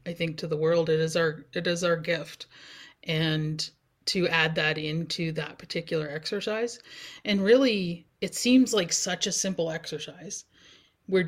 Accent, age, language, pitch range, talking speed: American, 30-49, English, 165-210 Hz, 160 wpm